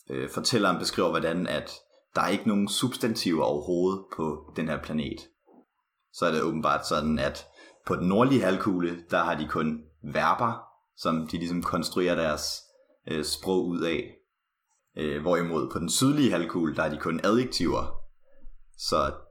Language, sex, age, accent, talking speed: Danish, male, 30-49, native, 150 wpm